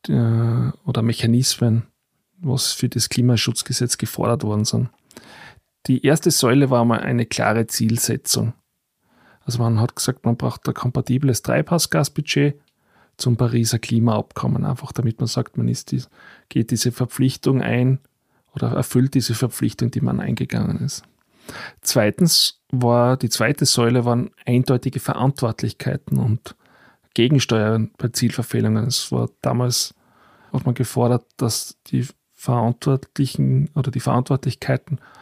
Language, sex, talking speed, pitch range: German, male, 125 wpm, 115-135 Hz